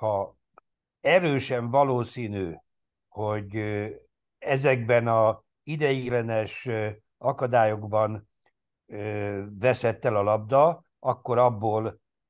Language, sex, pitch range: Hungarian, male, 105-130 Hz